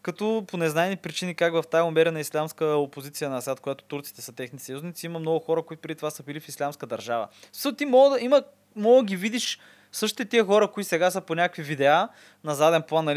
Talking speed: 205 wpm